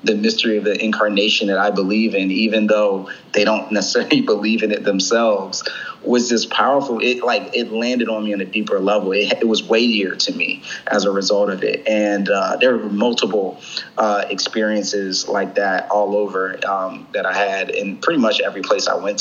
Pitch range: 95-110 Hz